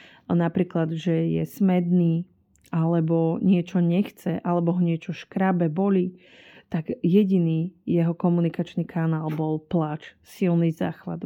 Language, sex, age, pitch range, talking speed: Slovak, female, 30-49, 160-185 Hz, 110 wpm